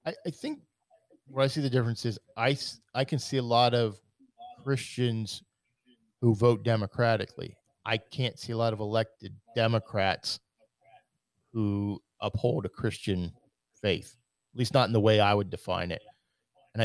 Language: English